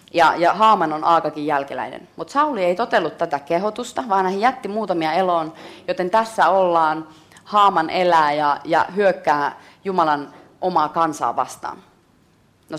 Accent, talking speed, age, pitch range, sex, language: native, 140 wpm, 30-49, 165-220 Hz, female, Finnish